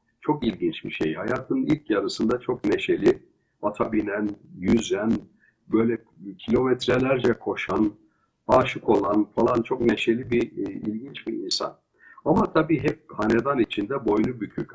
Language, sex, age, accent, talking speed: Turkish, male, 60-79, native, 130 wpm